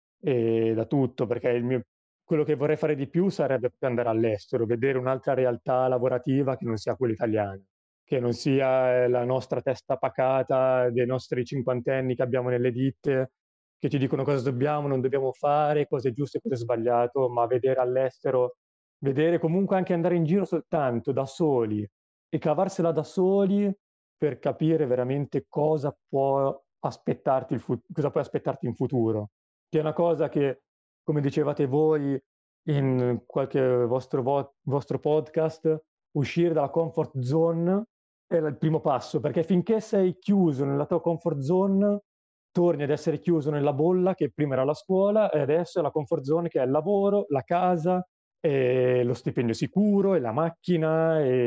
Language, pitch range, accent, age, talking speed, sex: Italian, 125-160 Hz, native, 30-49, 165 wpm, male